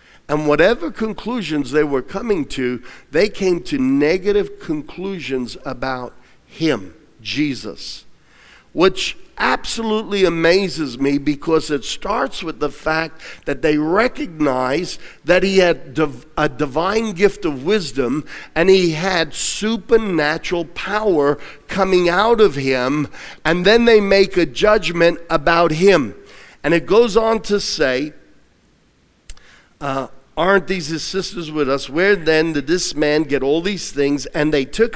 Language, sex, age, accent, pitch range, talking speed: English, male, 50-69, American, 135-185 Hz, 135 wpm